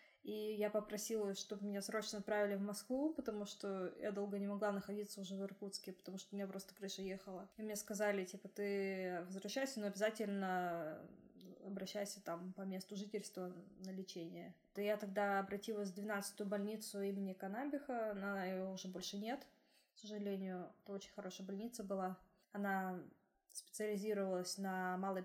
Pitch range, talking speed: 195-215 Hz, 155 wpm